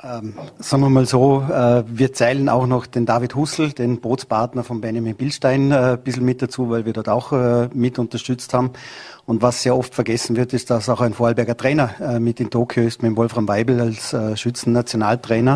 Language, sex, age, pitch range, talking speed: German, male, 40-59, 120-130 Hz, 210 wpm